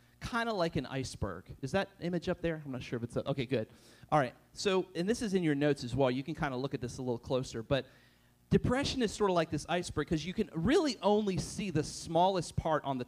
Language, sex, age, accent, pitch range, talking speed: English, male, 40-59, American, 135-170 Hz, 265 wpm